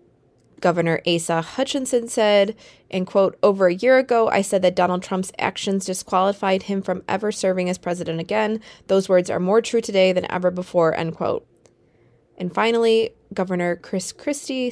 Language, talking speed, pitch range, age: English, 165 wpm, 180-220 Hz, 20-39